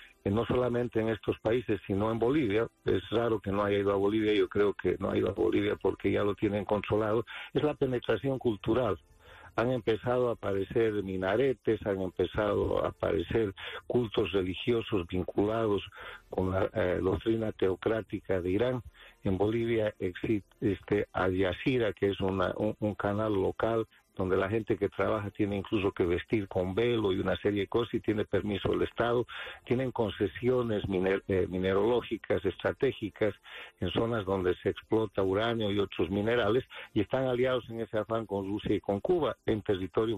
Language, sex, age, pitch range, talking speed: English, male, 50-69, 100-115 Hz, 165 wpm